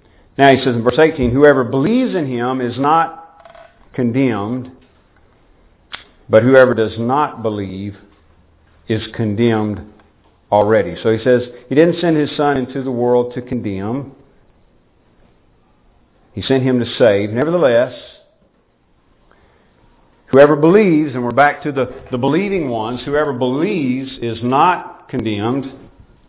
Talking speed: 125 wpm